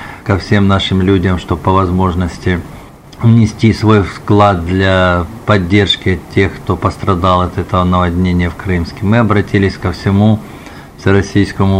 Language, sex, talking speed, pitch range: Russian, male, 125 wpm, 95-105 Hz